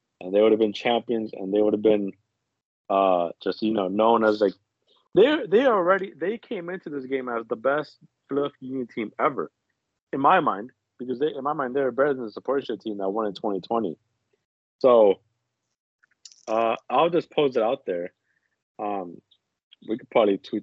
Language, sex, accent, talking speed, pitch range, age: English, male, American, 185 wpm, 110-140 Hz, 30-49